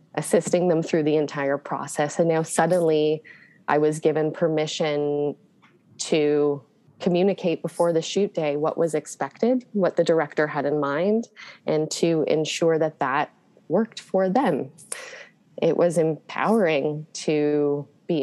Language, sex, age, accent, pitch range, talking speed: English, female, 20-39, American, 150-180 Hz, 135 wpm